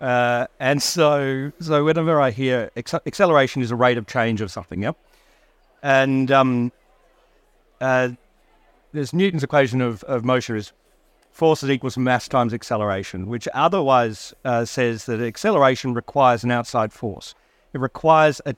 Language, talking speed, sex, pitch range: English, 150 wpm, male, 120-140 Hz